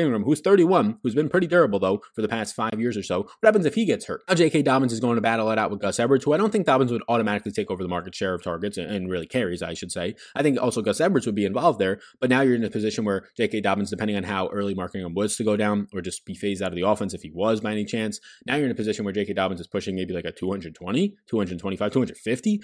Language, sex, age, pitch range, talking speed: English, male, 20-39, 100-145 Hz, 290 wpm